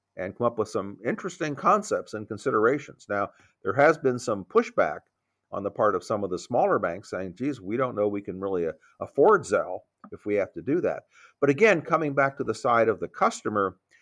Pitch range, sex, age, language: 110-140 Hz, male, 50-69, English